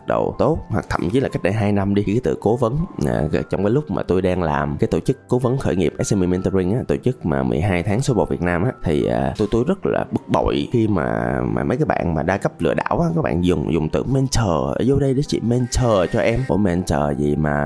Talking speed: 270 wpm